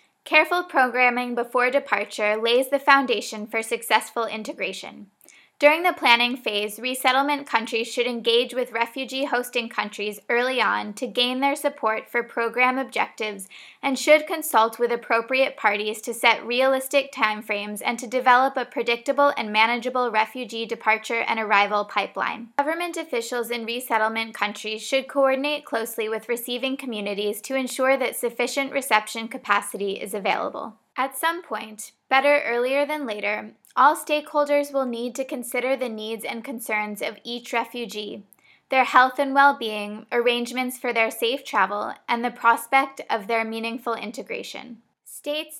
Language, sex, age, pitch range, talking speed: English, female, 20-39, 220-265 Hz, 140 wpm